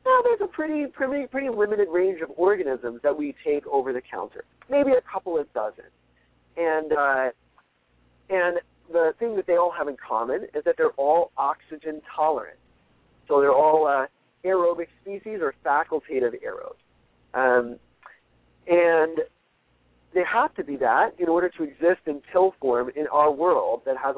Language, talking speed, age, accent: English, 165 wpm, 40-59, American